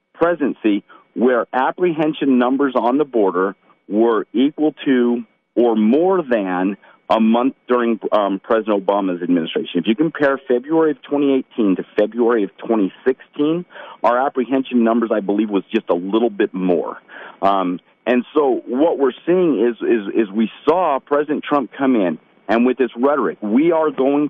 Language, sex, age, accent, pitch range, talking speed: English, male, 40-59, American, 120-155 Hz, 155 wpm